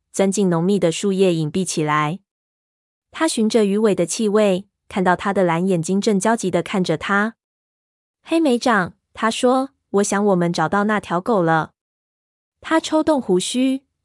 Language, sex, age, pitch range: Chinese, female, 20-39, 175-220 Hz